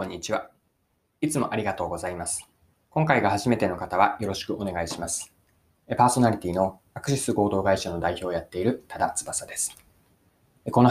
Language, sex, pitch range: Japanese, male, 85-125 Hz